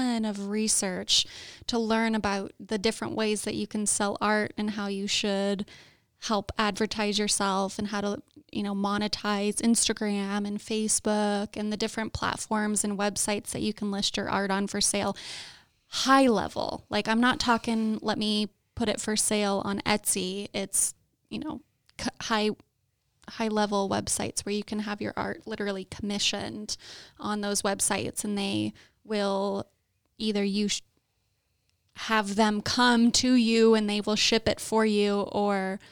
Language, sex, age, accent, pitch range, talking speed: English, female, 10-29, American, 195-220 Hz, 160 wpm